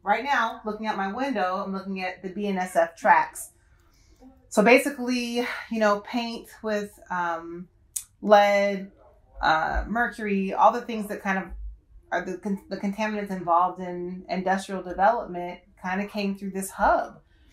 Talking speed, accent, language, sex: 145 wpm, American, English, female